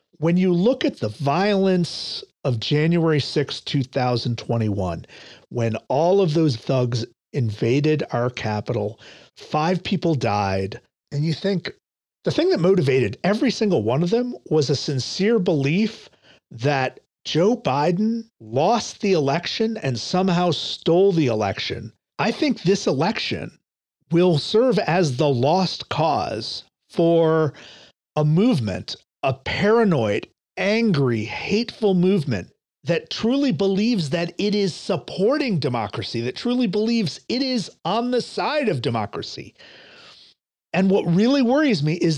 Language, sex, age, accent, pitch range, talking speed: English, male, 50-69, American, 140-205 Hz, 130 wpm